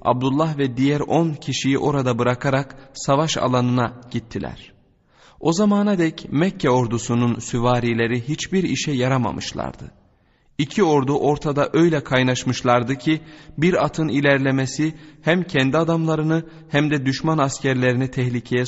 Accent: native